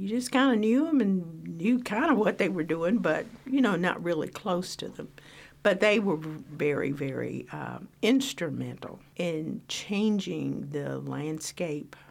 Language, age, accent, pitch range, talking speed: English, 50-69, American, 140-175 Hz, 165 wpm